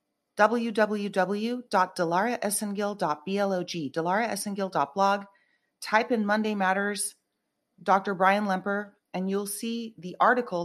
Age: 30-49